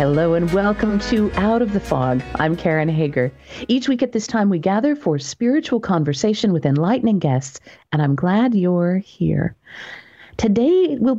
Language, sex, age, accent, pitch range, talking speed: English, female, 50-69, American, 165-245 Hz, 165 wpm